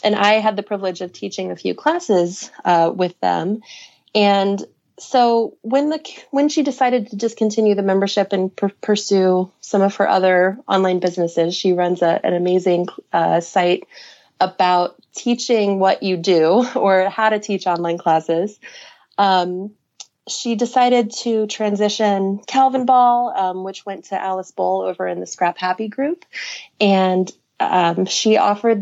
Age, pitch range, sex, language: 30-49, 180-215 Hz, female, English